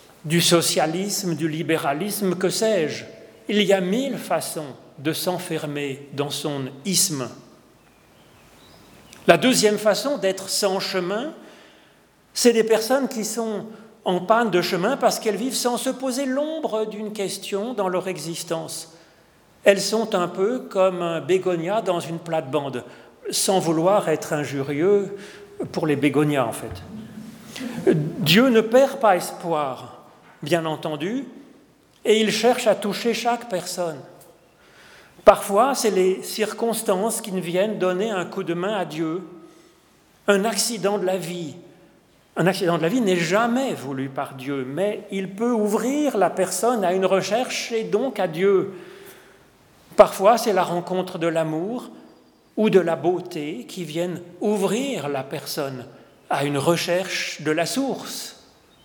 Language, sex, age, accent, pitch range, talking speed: French, male, 40-59, French, 165-220 Hz, 140 wpm